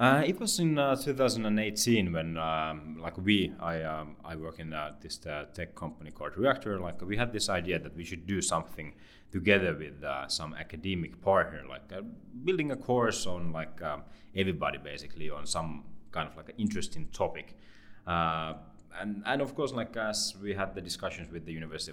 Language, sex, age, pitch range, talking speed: Hungarian, male, 30-49, 80-105 Hz, 190 wpm